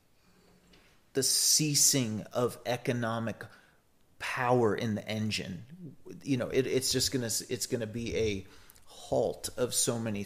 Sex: male